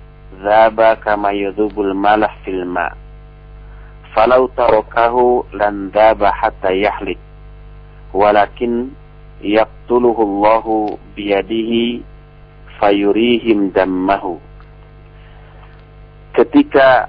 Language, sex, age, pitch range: Indonesian, male, 50-69, 105-150 Hz